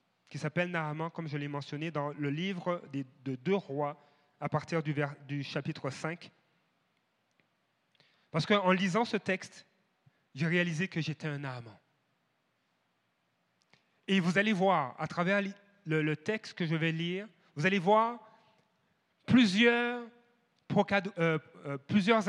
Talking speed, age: 120 wpm, 30-49